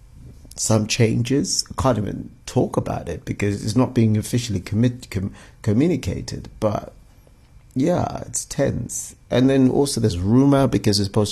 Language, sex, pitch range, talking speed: English, male, 100-120 Hz, 150 wpm